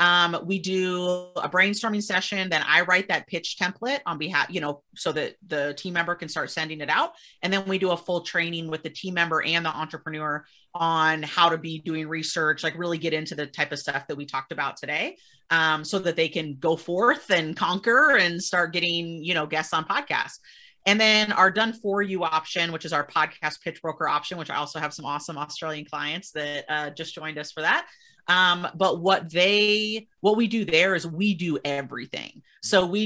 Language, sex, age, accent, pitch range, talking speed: English, female, 30-49, American, 160-190 Hz, 215 wpm